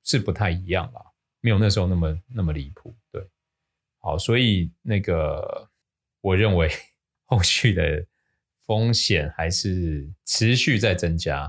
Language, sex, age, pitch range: Chinese, male, 20-39, 90-110 Hz